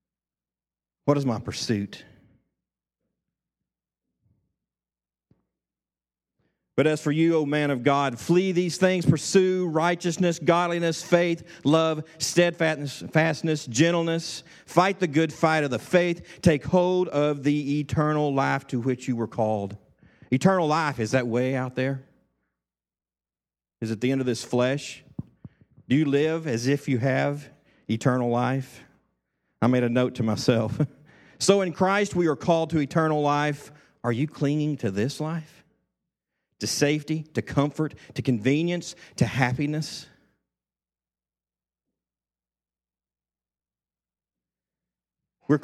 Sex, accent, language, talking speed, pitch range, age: male, American, English, 120 wpm, 115-160 Hz, 40-59